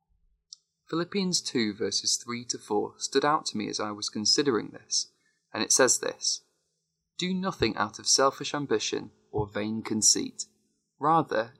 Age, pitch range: 20-39, 105-150 Hz